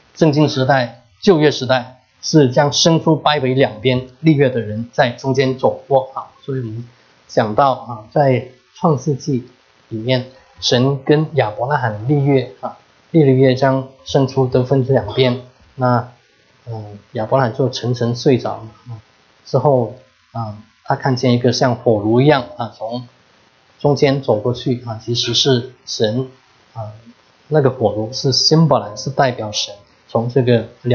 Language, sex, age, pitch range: English, male, 20-39, 115-140 Hz